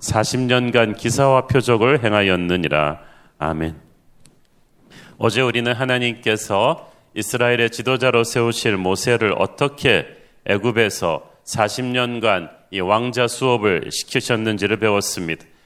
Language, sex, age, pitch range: Korean, male, 40-59, 105-125 Hz